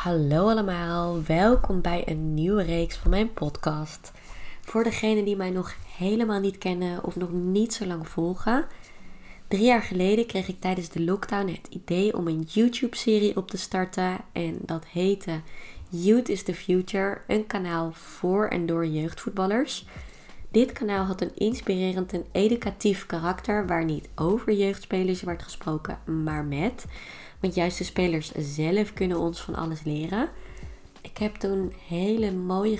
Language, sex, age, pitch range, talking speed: Dutch, female, 20-39, 170-205 Hz, 155 wpm